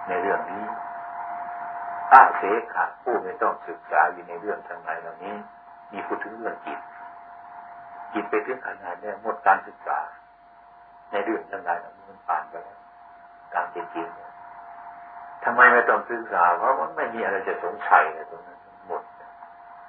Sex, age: male, 60-79